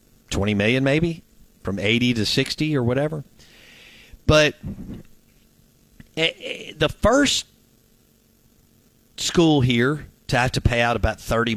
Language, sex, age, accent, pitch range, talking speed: English, male, 50-69, American, 95-125 Hz, 110 wpm